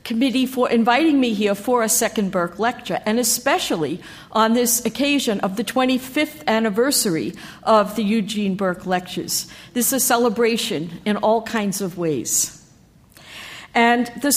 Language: English